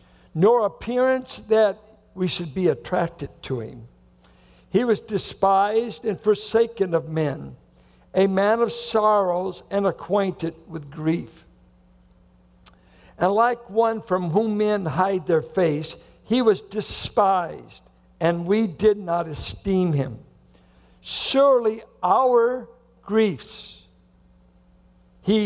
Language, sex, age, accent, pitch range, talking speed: English, male, 60-79, American, 145-220 Hz, 110 wpm